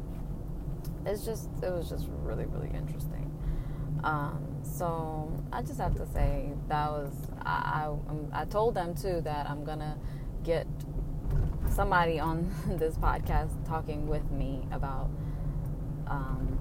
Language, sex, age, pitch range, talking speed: Amharic, female, 20-39, 130-150 Hz, 135 wpm